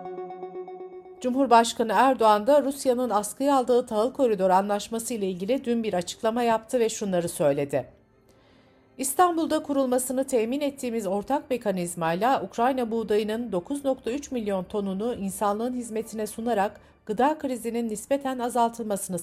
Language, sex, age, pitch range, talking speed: Turkish, female, 60-79, 190-260 Hz, 110 wpm